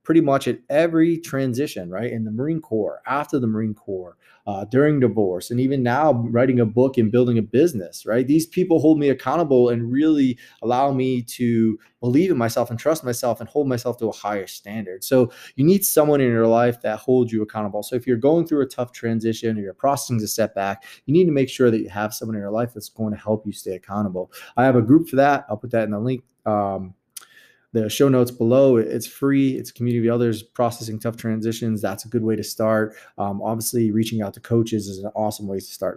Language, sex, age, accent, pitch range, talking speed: English, male, 20-39, American, 110-135 Hz, 225 wpm